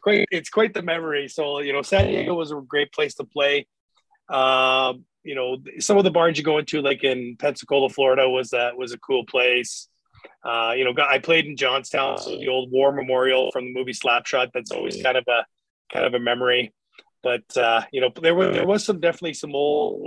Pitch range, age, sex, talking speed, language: 130-155 Hz, 30-49, male, 220 wpm, English